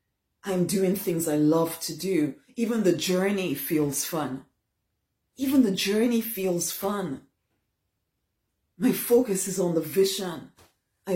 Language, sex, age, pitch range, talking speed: English, female, 30-49, 160-220 Hz, 130 wpm